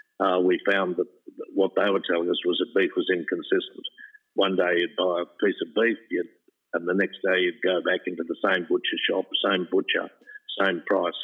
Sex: male